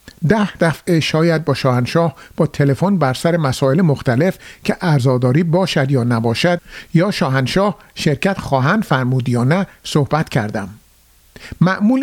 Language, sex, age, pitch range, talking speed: Persian, male, 50-69, 135-190 Hz, 130 wpm